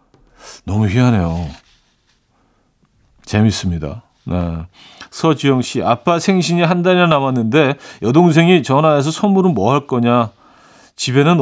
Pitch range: 115-155 Hz